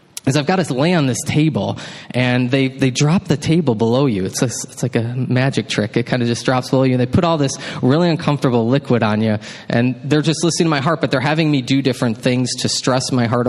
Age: 20-39